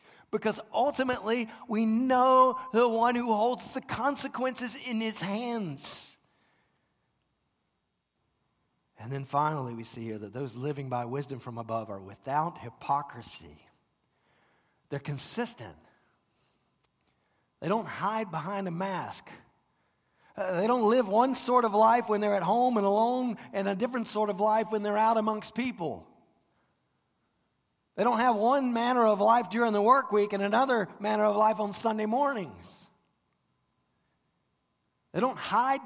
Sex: male